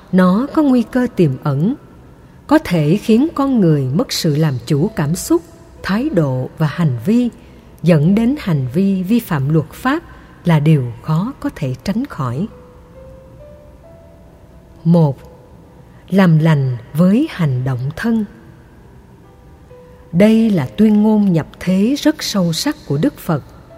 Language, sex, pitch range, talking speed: Vietnamese, female, 145-220 Hz, 140 wpm